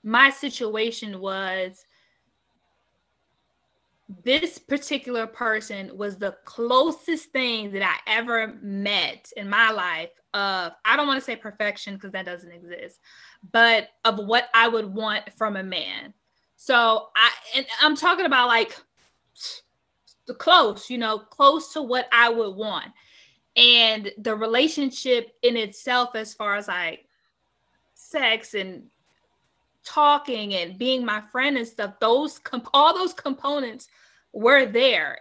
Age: 20-39